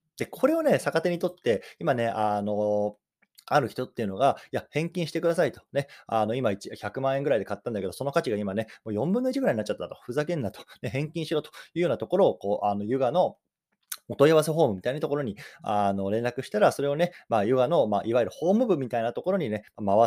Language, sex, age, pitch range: Japanese, male, 20-39, 105-175 Hz